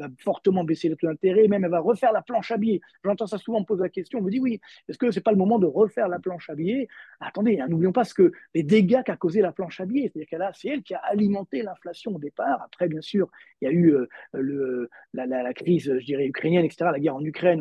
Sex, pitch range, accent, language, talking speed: male, 160-215 Hz, French, French, 285 wpm